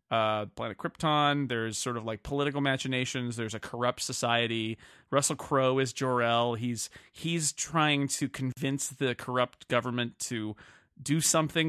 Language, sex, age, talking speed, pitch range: English, male, 30-49, 145 wpm, 110-135 Hz